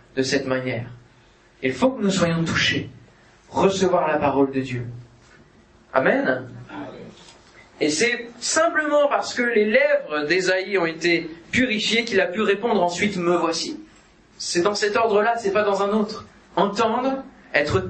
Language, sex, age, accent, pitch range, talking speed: French, male, 30-49, French, 165-225 Hz, 150 wpm